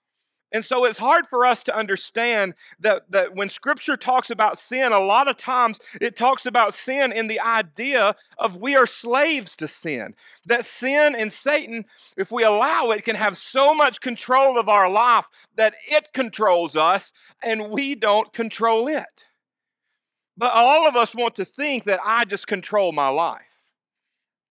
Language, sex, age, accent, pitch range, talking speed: English, male, 40-59, American, 145-235 Hz, 170 wpm